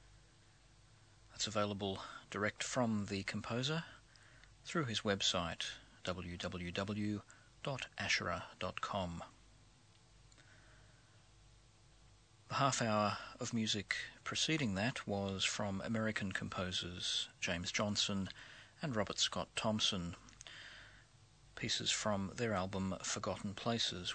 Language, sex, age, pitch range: English, male, 40-59, 95-120 Hz